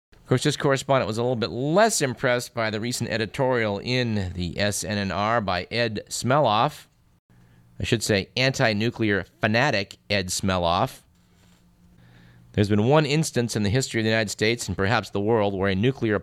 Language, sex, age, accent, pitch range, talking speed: English, male, 50-69, American, 100-125 Hz, 165 wpm